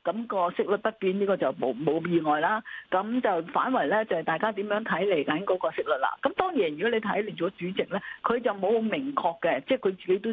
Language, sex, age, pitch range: Chinese, female, 50-69, 180-250 Hz